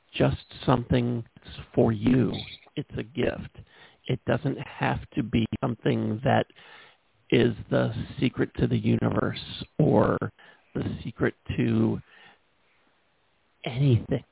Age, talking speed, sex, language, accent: 50-69, 110 wpm, male, English, American